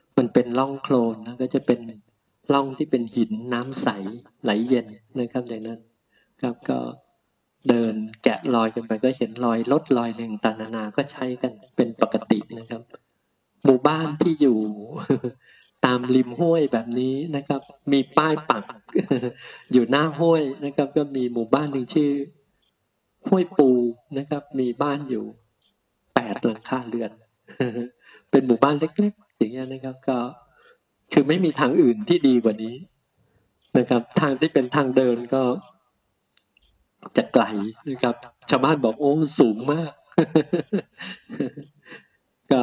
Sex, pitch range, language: male, 115-140 Hz, Thai